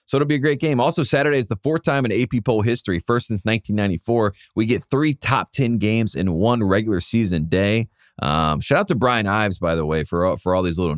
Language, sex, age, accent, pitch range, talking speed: English, male, 30-49, American, 90-120 Hz, 240 wpm